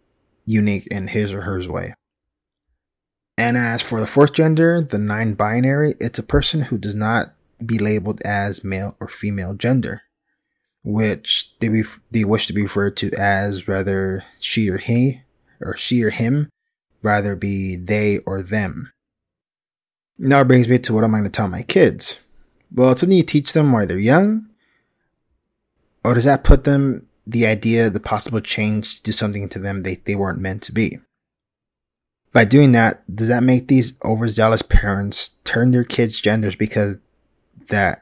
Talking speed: 170 wpm